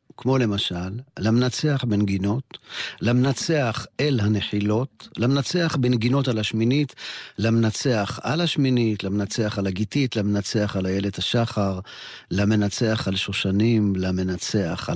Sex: male